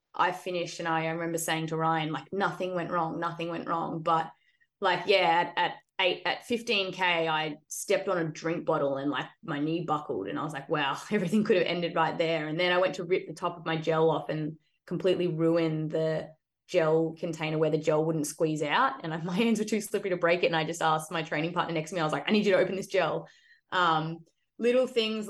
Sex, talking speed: female, 245 wpm